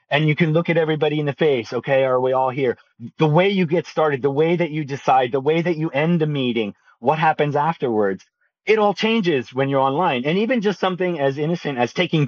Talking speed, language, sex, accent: 235 wpm, English, male, American